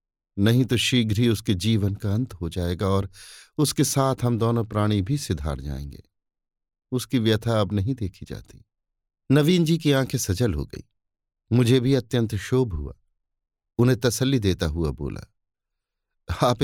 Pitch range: 95-125 Hz